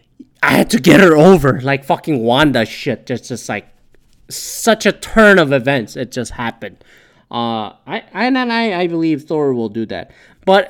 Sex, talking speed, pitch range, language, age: male, 185 wpm, 130-190 Hz, English, 20-39